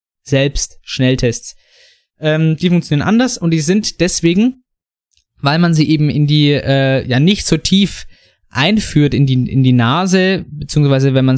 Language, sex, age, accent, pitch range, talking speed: German, male, 20-39, German, 135-175 Hz, 155 wpm